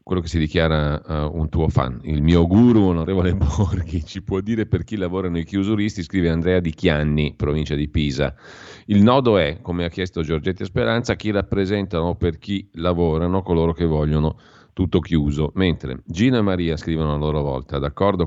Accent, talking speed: native, 175 wpm